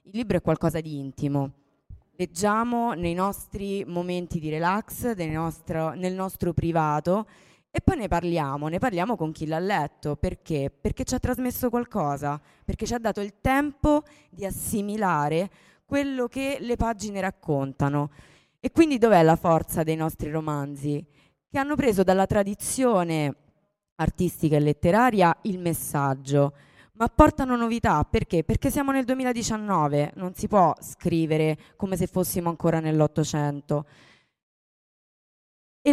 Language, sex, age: Italian, female, 20-39